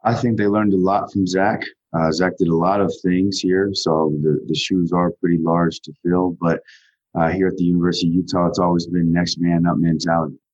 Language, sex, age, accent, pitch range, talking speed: English, male, 30-49, American, 75-85 Hz, 230 wpm